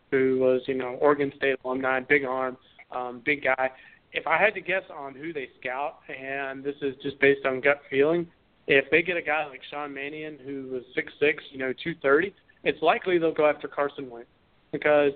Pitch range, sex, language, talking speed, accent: 140-160 Hz, male, English, 205 wpm, American